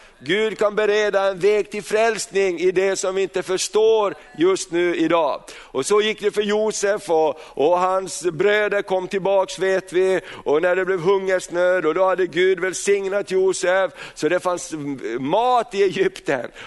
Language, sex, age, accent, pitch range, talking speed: Swedish, male, 50-69, native, 180-210 Hz, 170 wpm